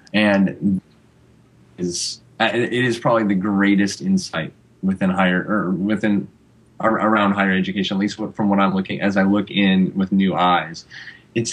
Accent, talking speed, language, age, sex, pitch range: American, 150 wpm, English, 20-39, male, 90-110 Hz